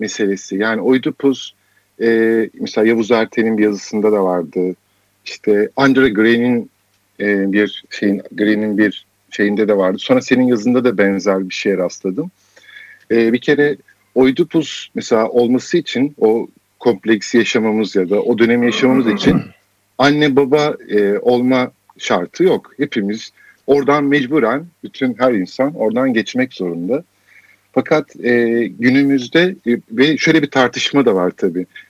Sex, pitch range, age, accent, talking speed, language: male, 105-130 Hz, 50-69, native, 135 wpm, Turkish